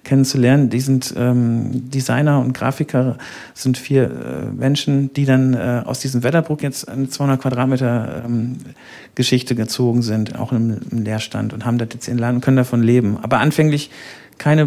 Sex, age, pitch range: male, 40-59, 125-145 Hz